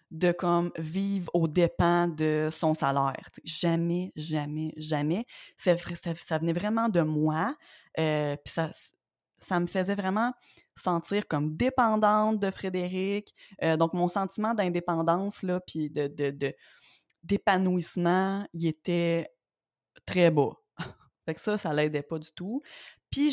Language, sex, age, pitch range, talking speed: French, female, 20-39, 160-190 Hz, 135 wpm